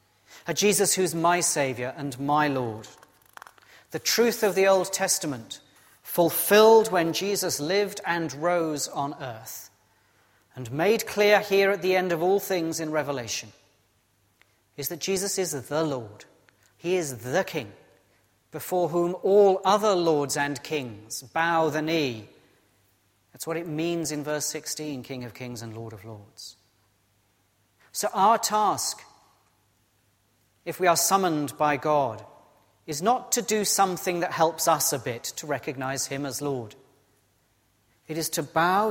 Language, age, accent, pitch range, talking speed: English, 40-59, British, 120-175 Hz, 150 wpm